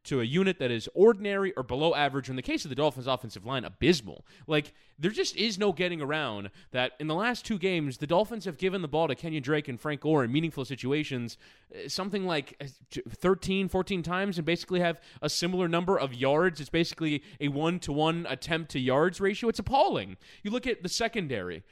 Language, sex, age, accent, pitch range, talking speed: English, male, 20-39, American, 140-180 Hz, 200 wpm